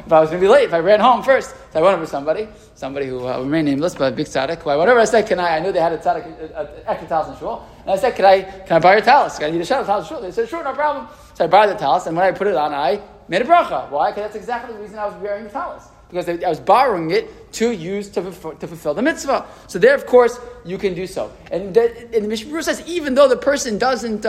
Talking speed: 295 wpm